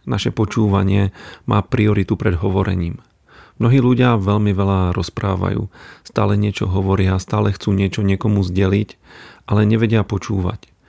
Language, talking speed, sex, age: Slovak, 120 wpm, male, 40-59